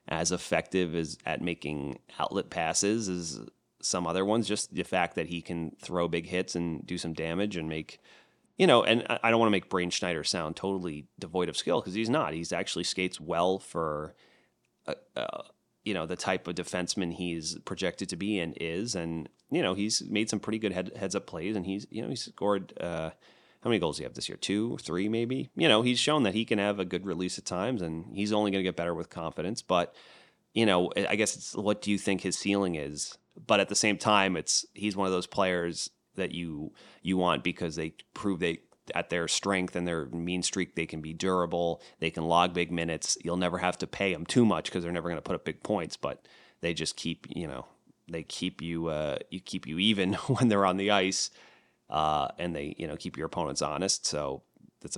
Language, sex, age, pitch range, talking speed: English, male, 30-49, 80-95 Hz, 230 wpm